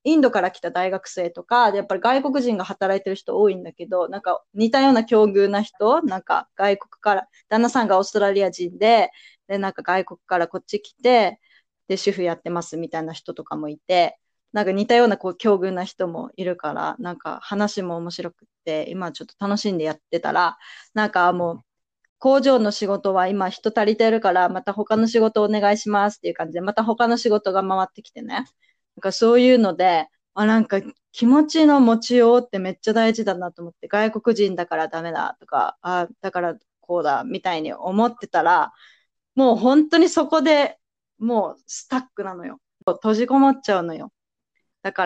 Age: 20-39